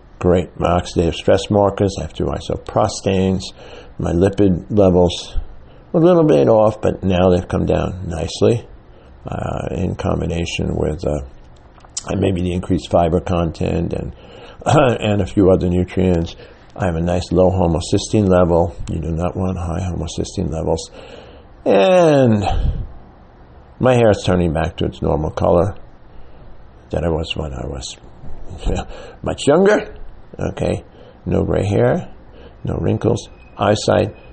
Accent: American